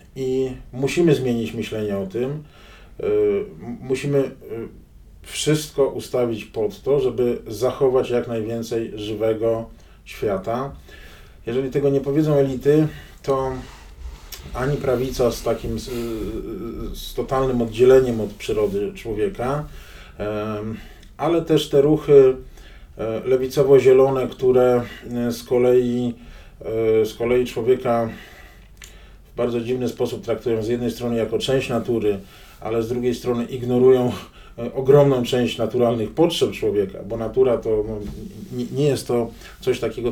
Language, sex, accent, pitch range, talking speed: Polish, male, native, 110-130 Hz, 110 wpm